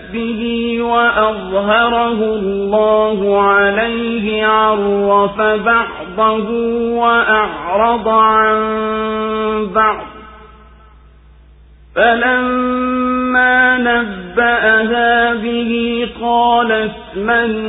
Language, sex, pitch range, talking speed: Swahili, male, 205-235 Hz, 35 wpm